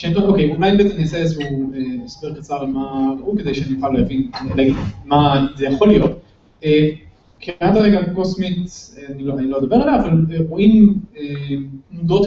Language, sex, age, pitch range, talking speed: Hebrew, male, 30-49, 140-205 Hz, 120 wpm